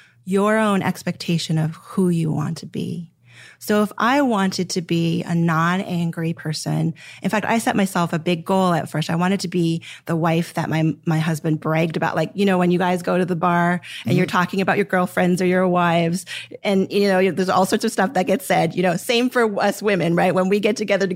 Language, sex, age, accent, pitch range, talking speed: English, female, 30-49, American, 165-195 Hz, 235 wpm